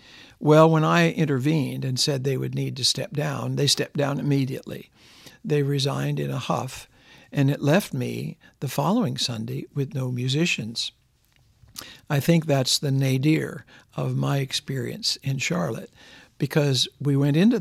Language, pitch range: English, 130-155 Hz